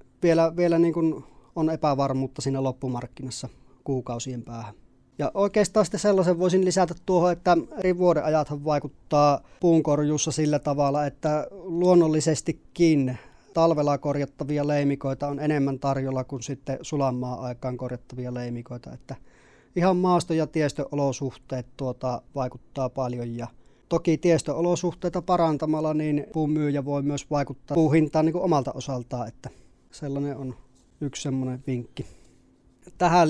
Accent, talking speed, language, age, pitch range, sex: native, 120 wpm, Finnish, 30-49, 135-160 Hz, male